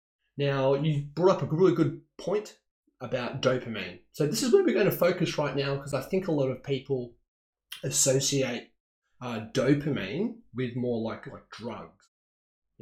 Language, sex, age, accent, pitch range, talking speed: English, male, 20-39, Australian, 115-150 Hz, 170 wpm